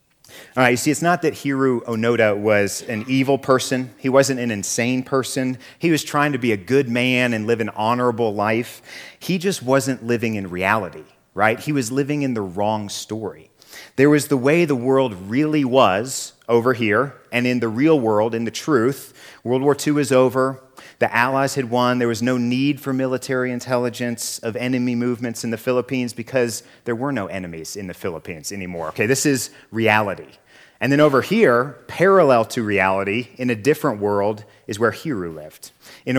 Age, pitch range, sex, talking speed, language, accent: 30-49, 110-135 Hz, male, 190 wpm, English, American